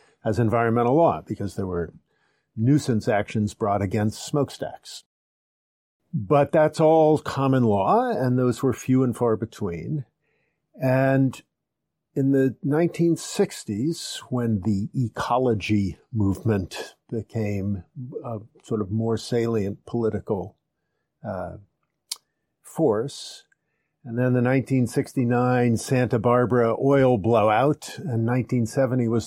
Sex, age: male, 50-69